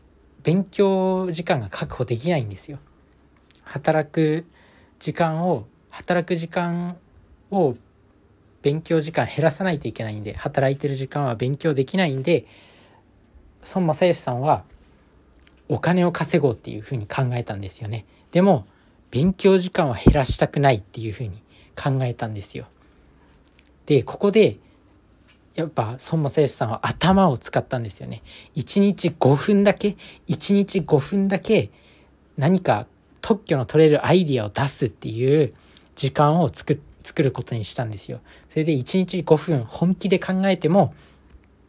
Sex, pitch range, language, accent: male, 105-170 Hz, Japanese, native